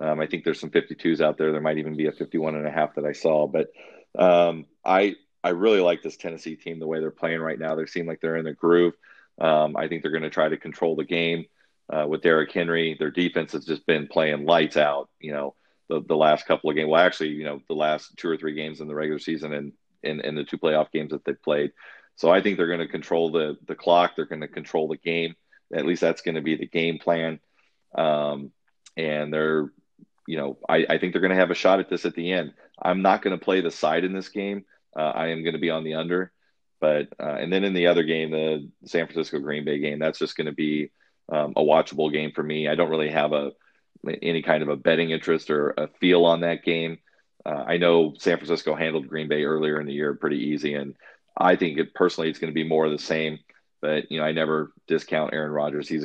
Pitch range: 75-85 Hz